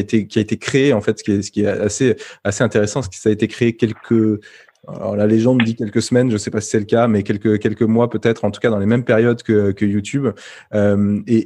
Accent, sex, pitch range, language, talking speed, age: French, male, 105-115 Hz, French, 285 wpm, 20-39